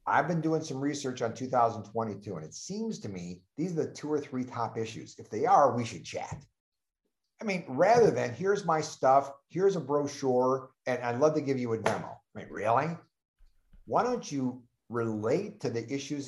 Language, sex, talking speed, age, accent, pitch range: English, male, 200 wpm, 50-69, American, 115-155 Hz